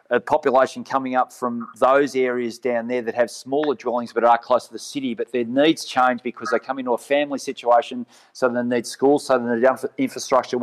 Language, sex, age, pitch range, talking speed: English, male, 30-49, 120-140 Hz, 215 wpm